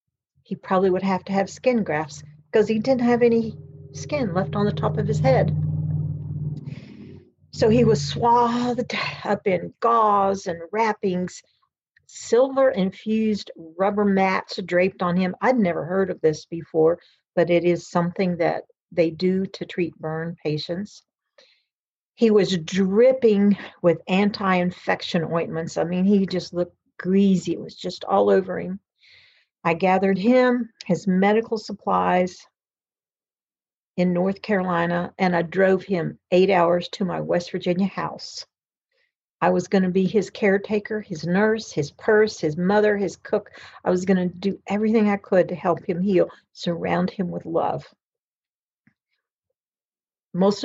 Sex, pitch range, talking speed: female, 170-210 Hz, 145 wpm